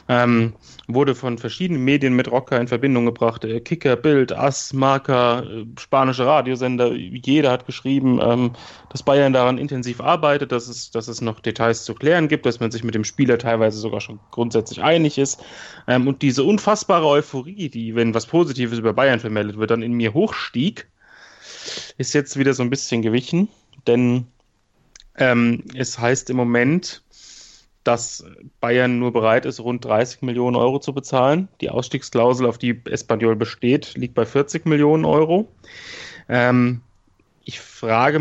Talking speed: 160 wpm